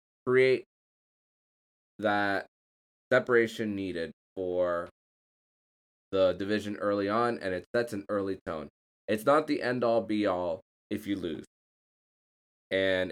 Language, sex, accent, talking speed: English, male, American, 110 wpm